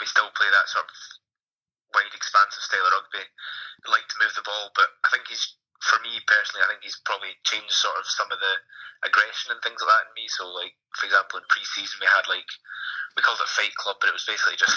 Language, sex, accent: English, male, British